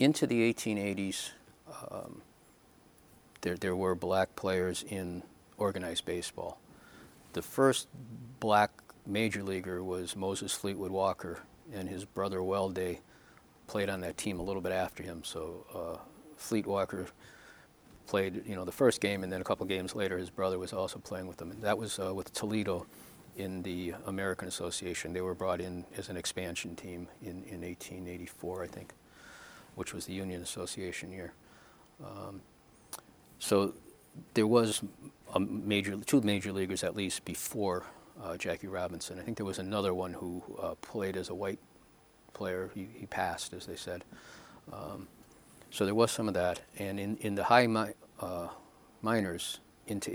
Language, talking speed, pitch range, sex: English, 160 wpm, 90-105 Hz, male